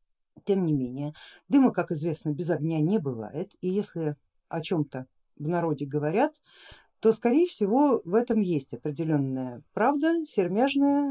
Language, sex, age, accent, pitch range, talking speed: Russian, female, 50-69, native, 165-230 Hz, 140 wpm